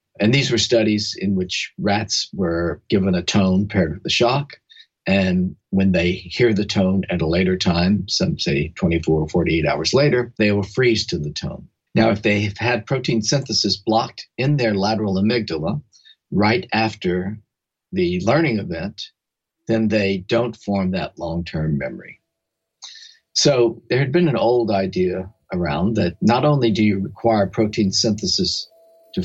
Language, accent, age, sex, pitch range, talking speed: English, American, 50-69, male, 95-145 Hz, 160 wpm